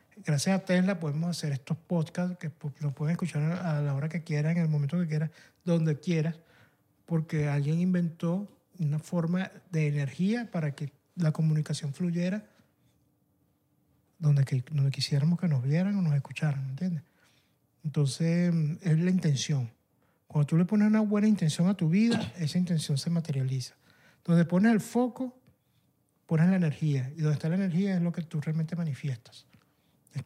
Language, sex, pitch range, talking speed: Spanish, male, 150-180 Hz, 160 wpm